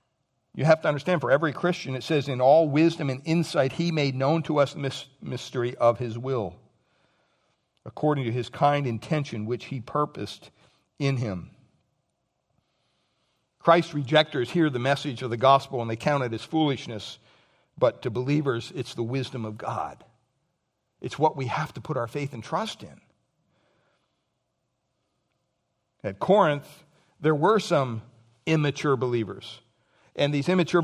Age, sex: 60-79, male